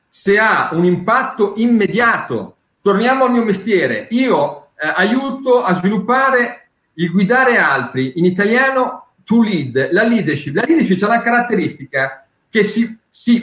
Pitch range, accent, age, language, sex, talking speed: 180-240 Hz, native, 40-59, Italian, male, 140 wpm